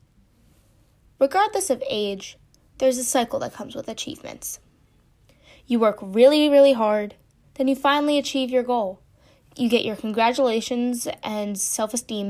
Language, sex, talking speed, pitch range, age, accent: English, female, 130 wpm, 210-270 Hz, 10-29, American